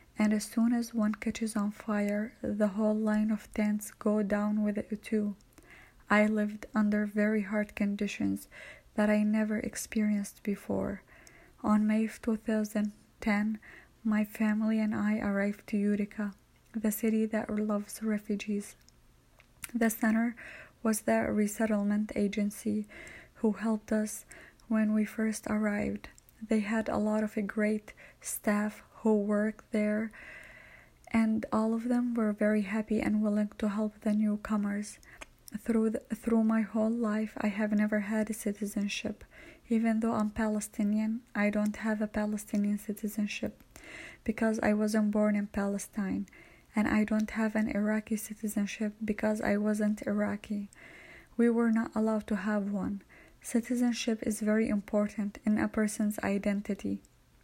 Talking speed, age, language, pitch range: 140 wpm, 20-39, English, 210-220 Hz